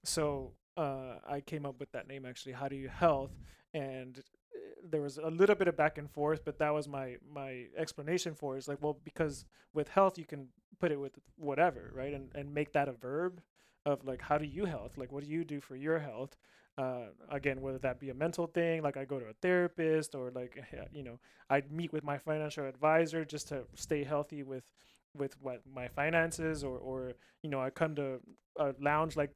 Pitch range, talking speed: 135-160 Hz, 220 wpm